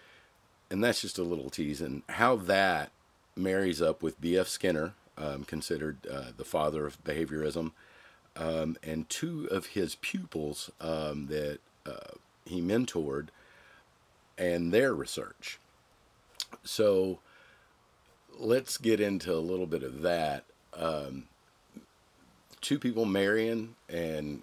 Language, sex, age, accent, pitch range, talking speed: English, male, 50-69, American, 75-95 Hz, 120 wpm